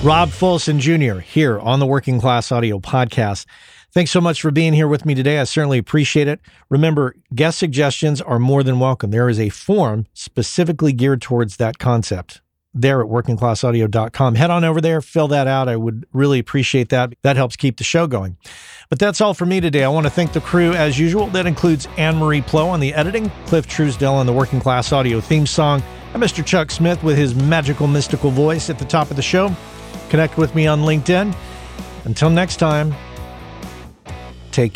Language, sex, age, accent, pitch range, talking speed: English, male, 40-59, American, 115-155 Hz, 195 wpm